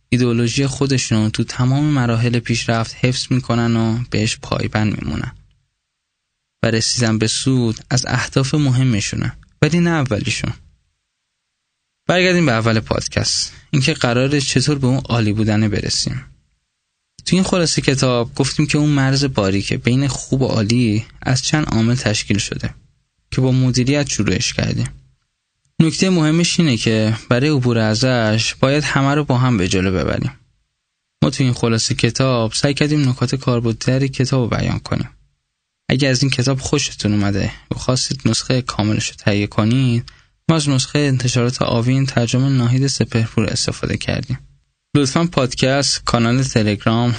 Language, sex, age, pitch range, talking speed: Persian, male, 10-29, 115-135 Hz, 140 wpm